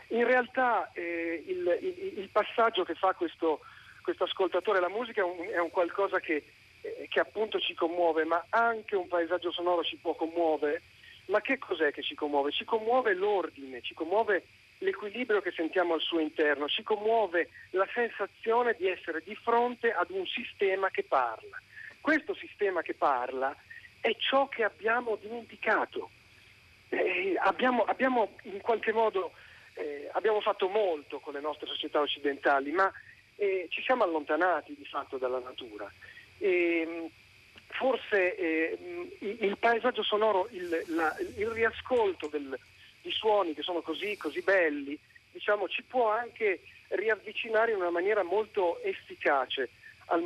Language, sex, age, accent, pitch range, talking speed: Italian, male, 40-59, native, 165-250 Hz, 145 wpm